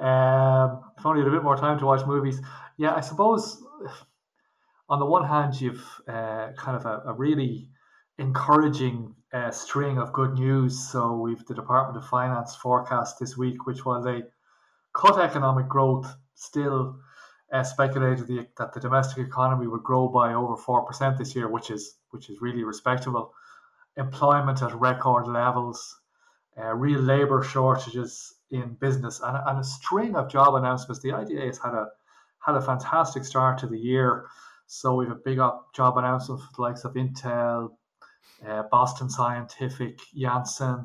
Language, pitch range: English, 120-135 Hz